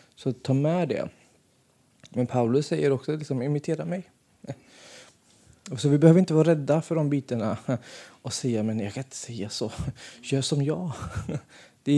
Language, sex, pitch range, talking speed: Swedish, male, 120-150 Hz, 155 wpm